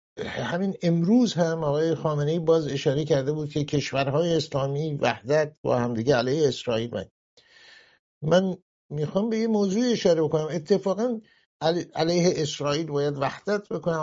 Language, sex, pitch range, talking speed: English, male, 145-180 Hz, 135 wpm